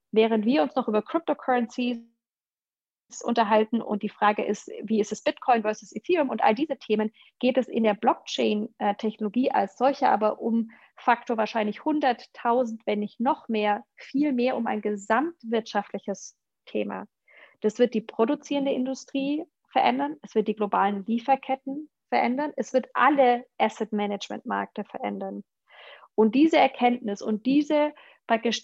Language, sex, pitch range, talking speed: German, female, 215-260 Hz, 140 wpm